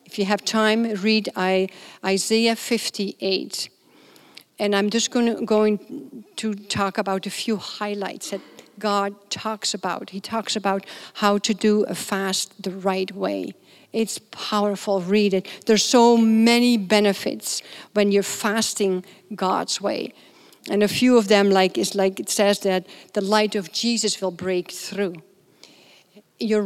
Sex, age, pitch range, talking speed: female, 50-69, 195-225 Hz, 150 wpm